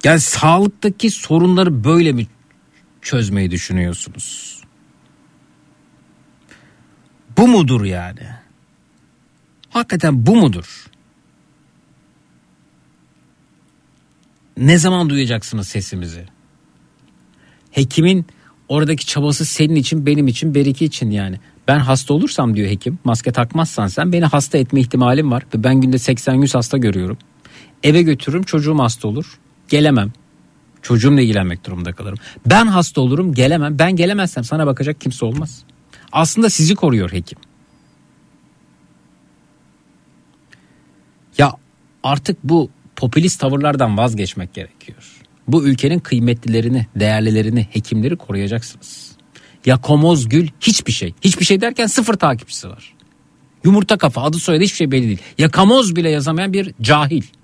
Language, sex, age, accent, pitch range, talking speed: Turkish, male, 50-69, native, 115-160 Hz, 110 wpm